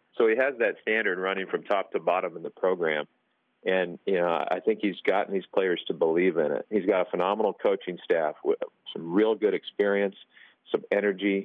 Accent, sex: American, male